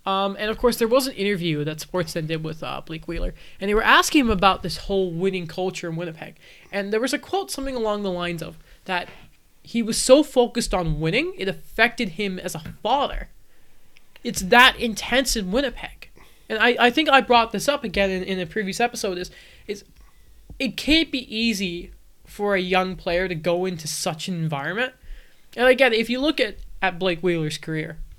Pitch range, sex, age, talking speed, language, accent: 175-225 Hz, male, 20-39, 200 wpm, English, American